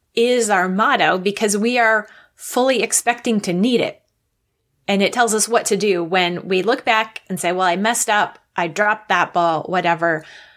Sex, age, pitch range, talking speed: female, 20-39, 185-230 Hz, 185 wpm